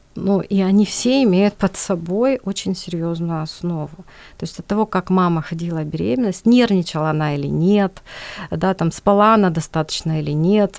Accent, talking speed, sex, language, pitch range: native, 160 wpm, female, Ukrainian, 170-200 Hz